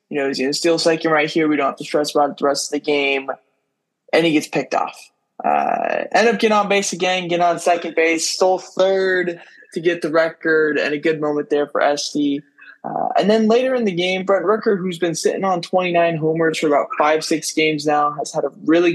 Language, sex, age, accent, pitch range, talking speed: English, male, 20-39, American, 145-170 Hz, 235 wpm